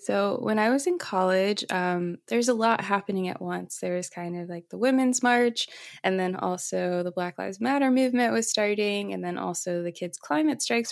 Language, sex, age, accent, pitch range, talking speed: English, female, 20-39, American, 180-230 Hz, 210 wpm